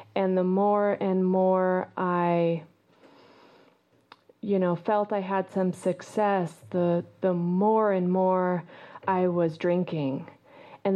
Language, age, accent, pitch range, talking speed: English, 30-49, American, 175-205 Hz, 120 wpm